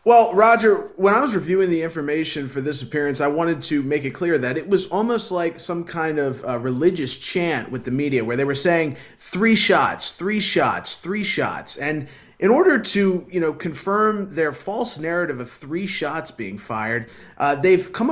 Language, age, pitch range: English, 20-39, 140-190 Hz